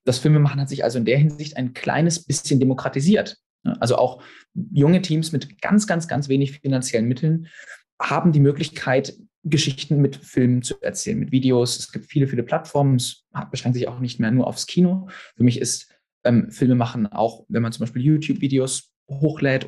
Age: 20-39